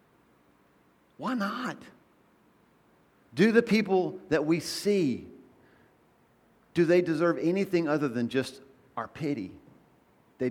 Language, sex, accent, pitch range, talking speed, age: English, male, American, 130-180 Hz, 105 wpm, 40-59